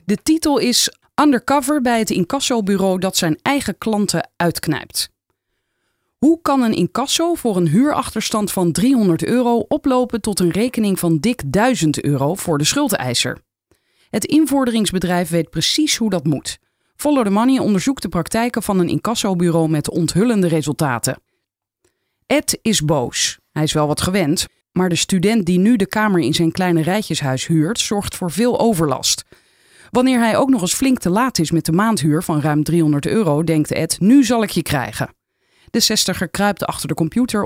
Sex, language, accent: female, Dutch, Dutch